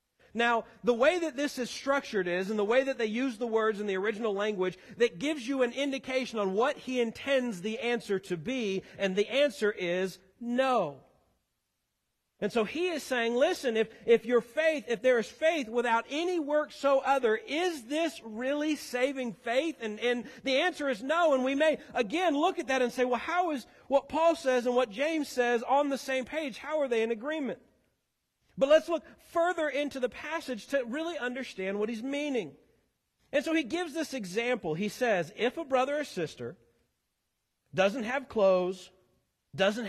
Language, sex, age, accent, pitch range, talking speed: English, male, 40-59, American, 220-285 Hz, 190 wpm